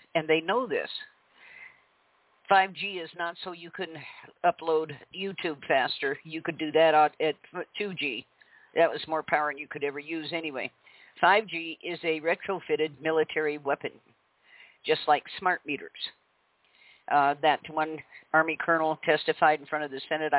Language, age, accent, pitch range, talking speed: English, 50-69, American, 155-180 Hz, 145 wpm